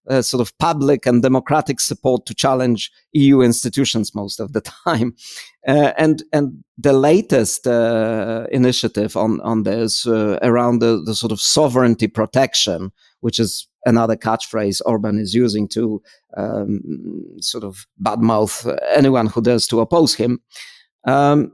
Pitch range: 115-150 Hz